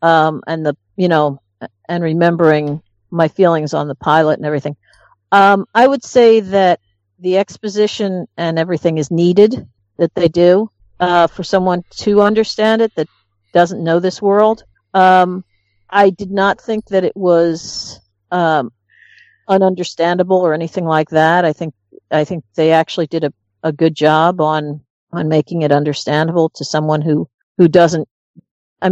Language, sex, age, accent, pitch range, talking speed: English, female, 50-69, American, 155-185 Hz, 155 wpm